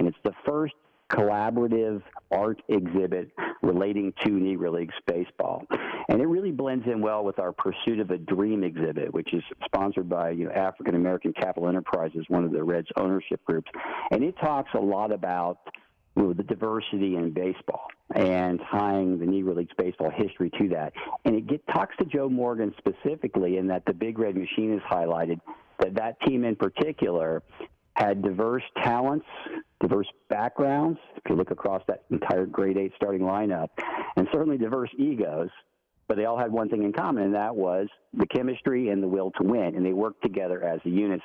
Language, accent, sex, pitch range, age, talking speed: English, American, male, 90-110 Hz, 50-69, 175 wpm